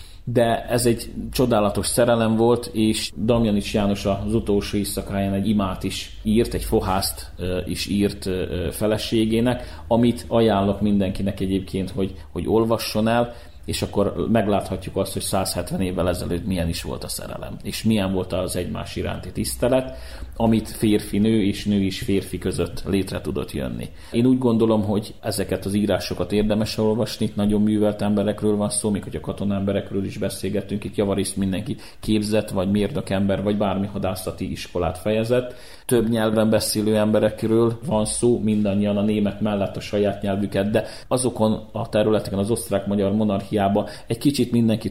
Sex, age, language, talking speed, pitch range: male, 30-49, Hungarian, 155 wpm, 95-110 Hz